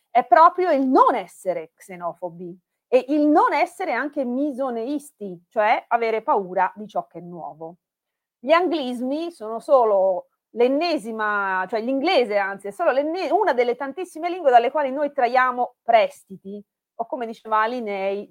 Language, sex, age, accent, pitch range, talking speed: Italian, female, 30-49, native, 195-275 Hz, 140 wpm